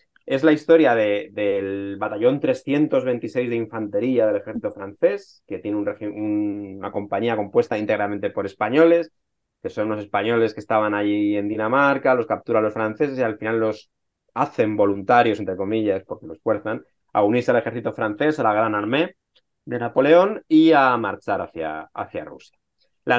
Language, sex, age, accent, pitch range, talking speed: Spanish, male, 30-49, Spanish, 105-155 Hz, 170 wpm